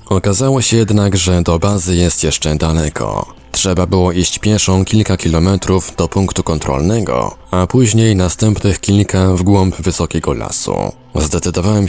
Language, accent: Polish, native